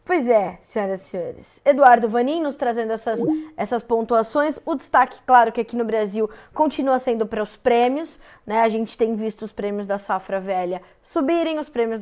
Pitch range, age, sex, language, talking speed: 225-280 Hz, 20-39, female, Portuguese, 185 wpm